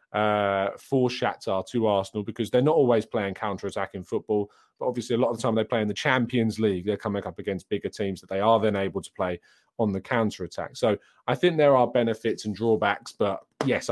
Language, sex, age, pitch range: English, male, 30-49, 110-145 Hz